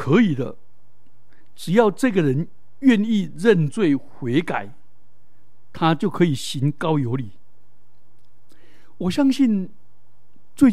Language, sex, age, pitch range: Chinese, male, 60-79, 135-210 Hz